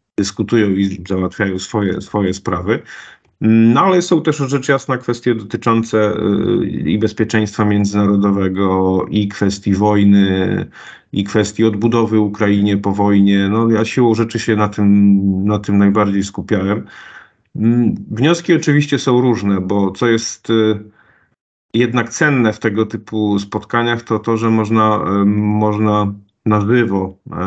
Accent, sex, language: native, male, Polish